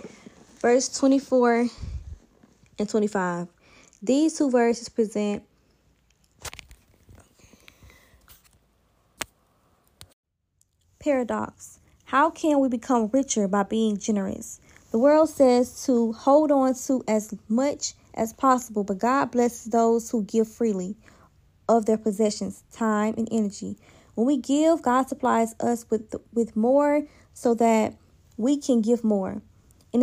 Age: 20-39